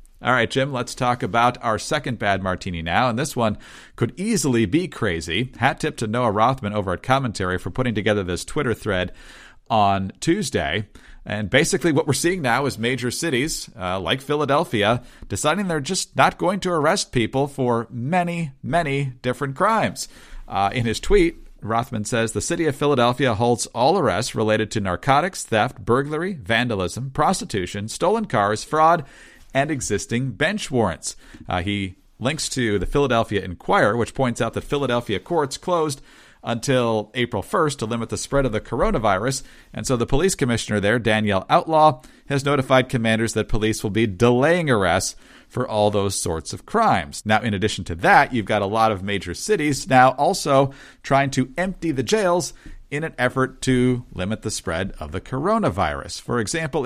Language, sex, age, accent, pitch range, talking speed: English, male, 40-59, American, 105-140 Hz, 175 wpm